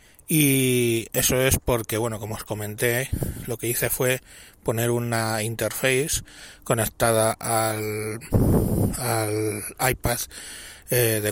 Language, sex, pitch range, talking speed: Spanish, male, 110-130 Hz, 110 wpm